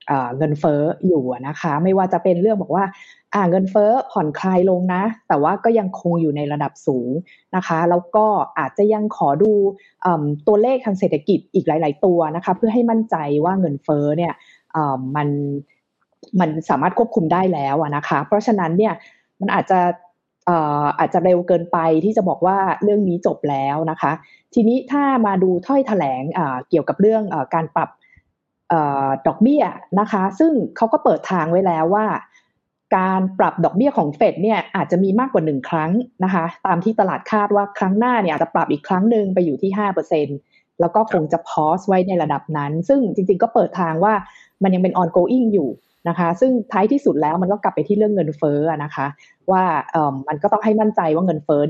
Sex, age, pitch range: female, 20-39, 160-205 Hz